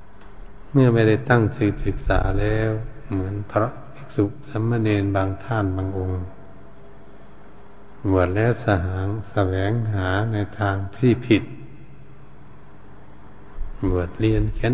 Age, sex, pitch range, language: 70-89, male, 95-115 Hz, Thai